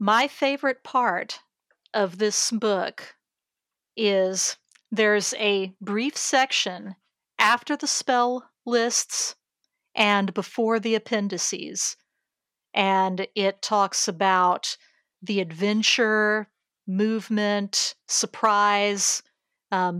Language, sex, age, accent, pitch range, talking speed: English, female, 40-59, American, 200-240 Hz, 85 wpm